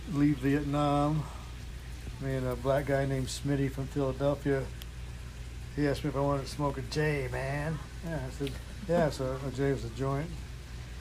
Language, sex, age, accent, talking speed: English, male, 60-79, American, 175 wpm